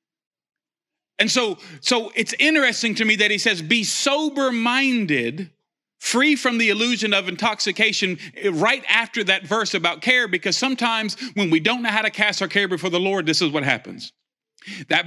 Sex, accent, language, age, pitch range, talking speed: male, American, English, 40-59, 135-195 Hz, 170 wpm